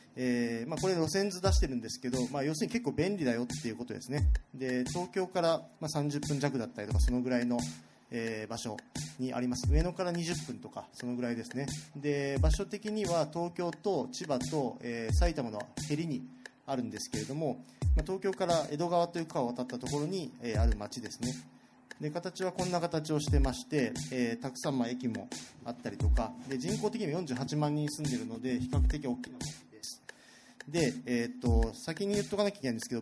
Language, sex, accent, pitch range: Japanese, male, native, 125-170 Hz